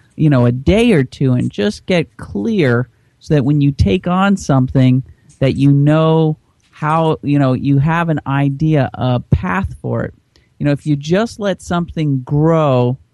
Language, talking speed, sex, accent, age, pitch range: English, 180 wpm, male, American, 40-59, 125-155 Hz